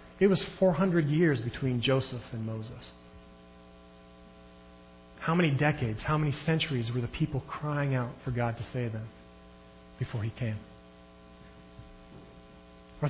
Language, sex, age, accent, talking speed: English, male, 40-59, American, 130 wpm